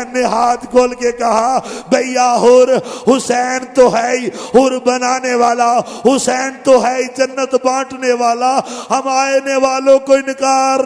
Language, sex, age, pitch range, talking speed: Urdu, male, 50-69, 185-250 Hz, 135 wpm